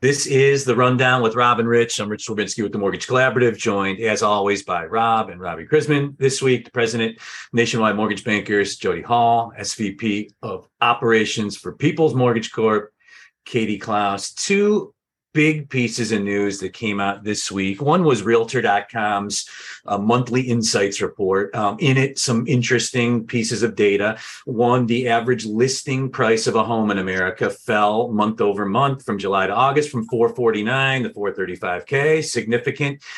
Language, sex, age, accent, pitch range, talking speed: English, male, 40-59, American, 105-130 Hz, 170 wpm